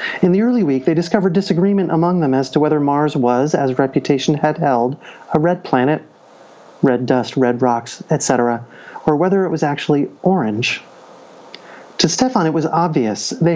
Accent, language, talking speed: American, English, 170 wpm